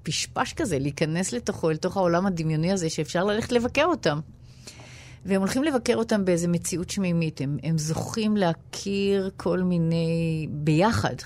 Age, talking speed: 30-49, 145 wpm